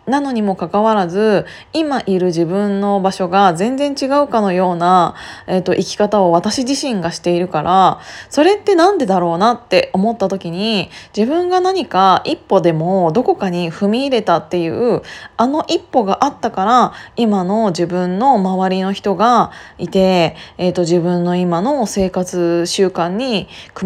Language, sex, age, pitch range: Japanese, female, 20-39, 180-230 Hz